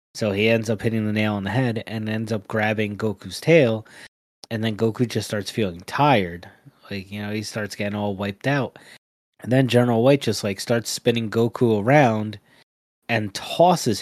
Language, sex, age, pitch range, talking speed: English, male, 20-39, 105-125 Hz, 190 wpm